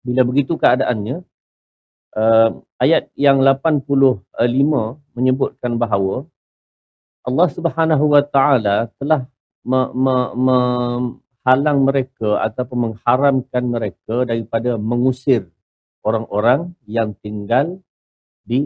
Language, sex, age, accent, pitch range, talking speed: Malayalam, male, 50-69, Indonesian, 105-140 Hz, 80 wpm